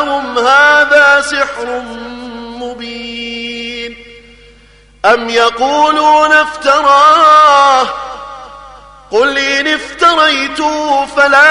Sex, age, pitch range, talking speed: male, 30-49, 260-295 Hz, 50 wpm